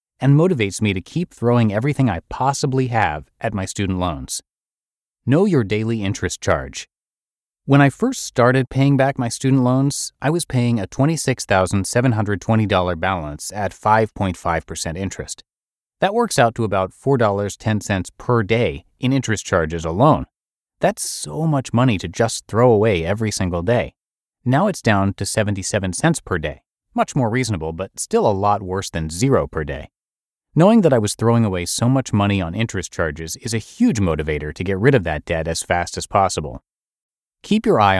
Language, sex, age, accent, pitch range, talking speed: English, male, 30-49, American, 95-135 Hz, 170 wpm